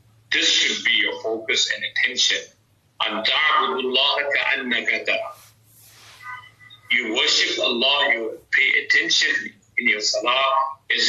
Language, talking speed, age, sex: English, 90 wpm, 50-69, male